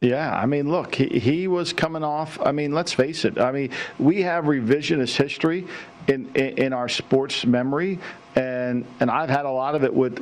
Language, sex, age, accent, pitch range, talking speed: English, male, 50-69, American, 130-150 Hz, 205 wpm